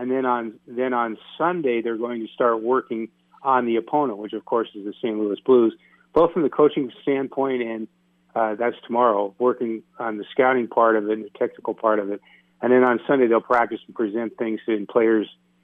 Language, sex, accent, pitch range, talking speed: English, male, American, 105-125 Hz, 210 wpm